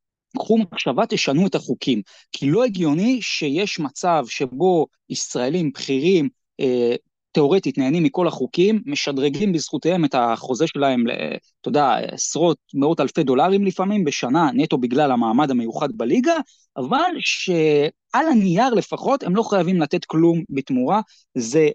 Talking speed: 130 wpm